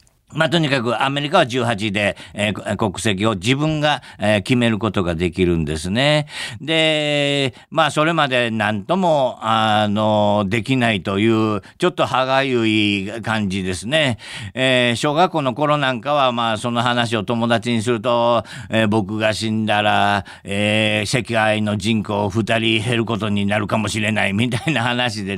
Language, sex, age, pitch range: Japanese, male, 50-69, 110-135 Hz